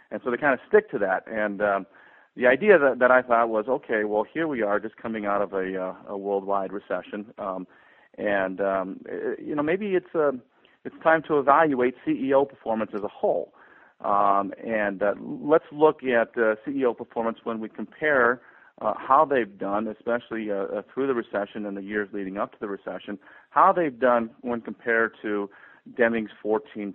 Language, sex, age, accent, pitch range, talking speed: English, male, 40-59, American, 100-125 Hz, 185 wpm